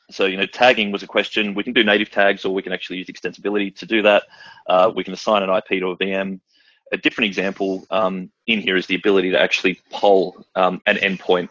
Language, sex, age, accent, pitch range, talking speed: English, male, 30-49, Australian, 95-110 Hz, 235 wpm